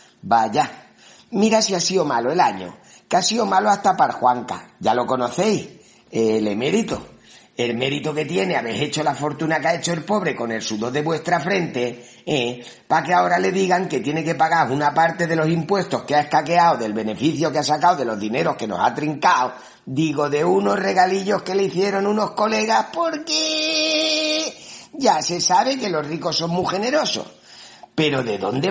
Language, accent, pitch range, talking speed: Spanish, Spanish, 130-185 Hz, 190 wpm